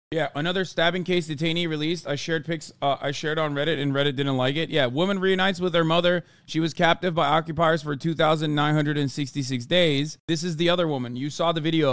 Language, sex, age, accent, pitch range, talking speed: English, male, 30-49, American, 135-170 Hz, 210 wpm